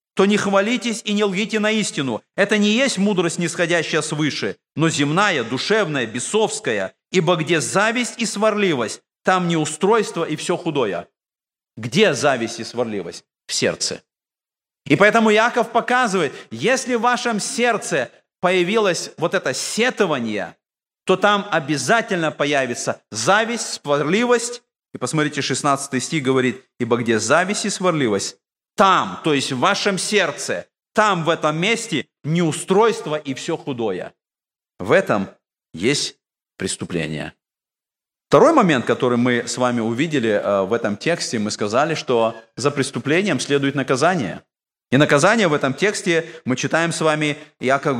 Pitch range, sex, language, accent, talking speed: 135-205 Hz, male, Russian, native, 135 wpm